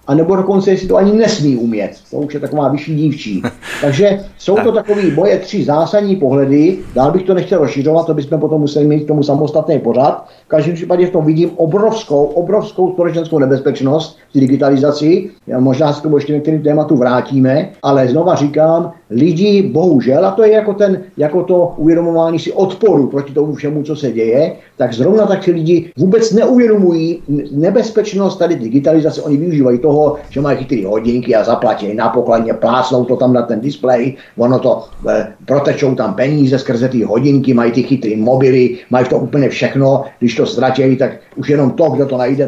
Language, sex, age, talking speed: Czech, male, 50-69, 180 wpm